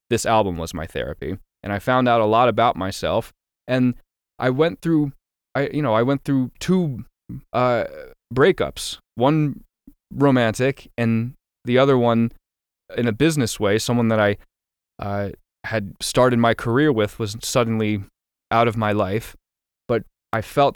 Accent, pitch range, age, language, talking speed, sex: American, 100-120 Hz, 20-39, English, 155 wpm, male